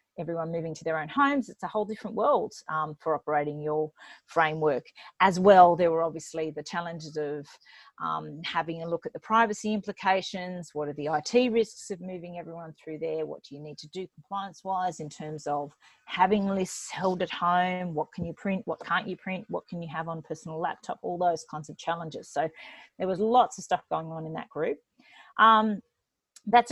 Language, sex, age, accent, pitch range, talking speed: English, female, 40-59, Australian, 170-215 Hz, 200 wpm